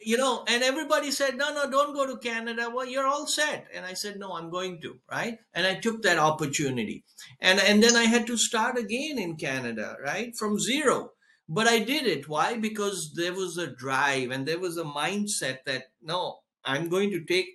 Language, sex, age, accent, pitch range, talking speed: English, male, 60-79, Indian, 175-230 Hz, 210 wpm